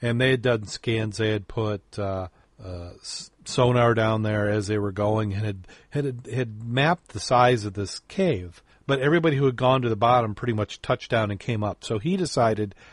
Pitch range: 105-125 Hz